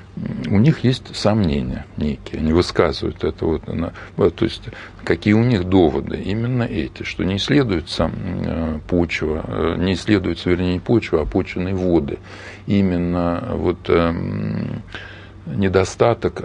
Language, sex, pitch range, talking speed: Russian, male, 85-105 Hz, 100 wpm